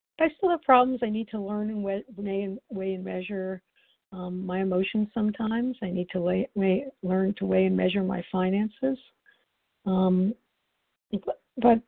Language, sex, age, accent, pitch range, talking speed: English, female, 60-79, American, 190-230 Hz, 160 wpm